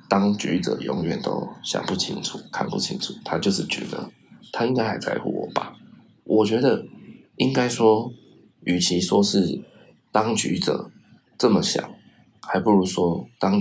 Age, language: 20-39, Chinese